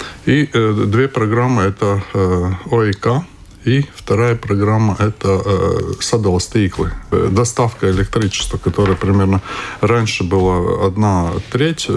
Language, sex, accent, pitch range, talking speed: Russian, male, native, 95-120 Hz, 115 wpm